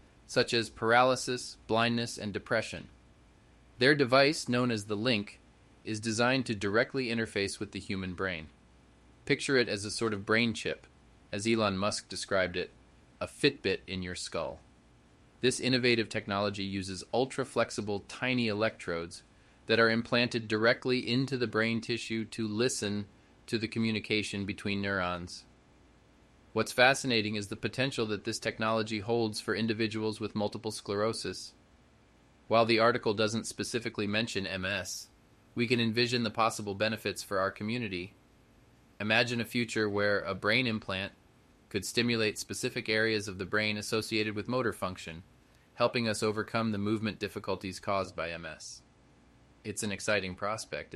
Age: 30-49